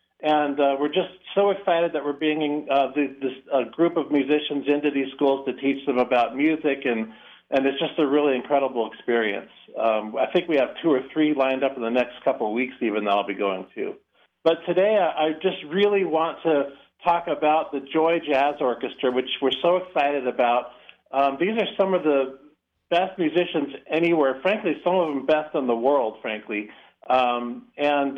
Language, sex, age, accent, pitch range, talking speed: English, male, 50-69, American, 135-165 Hz, 195 wpm